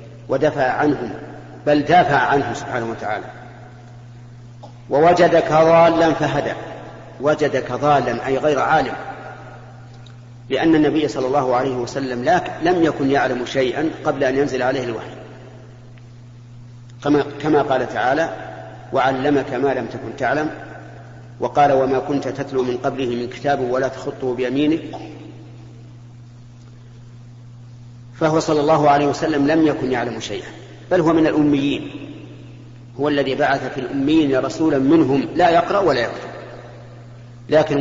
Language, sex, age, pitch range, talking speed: Arabic, male, 50-69, 120-145 Hz, 120 wpm